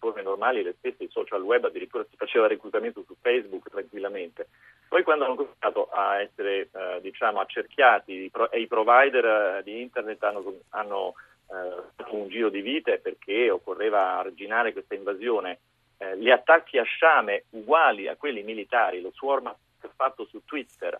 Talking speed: 165 wpm